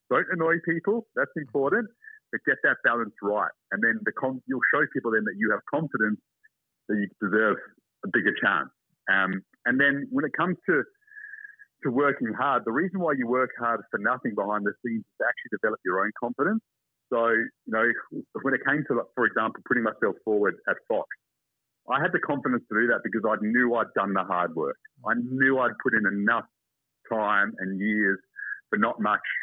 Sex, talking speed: male, 200 wpm